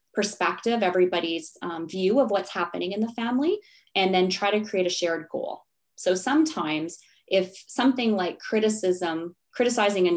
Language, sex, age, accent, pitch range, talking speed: English, female, 20-39, American, 165-200 Hz, 155 wpm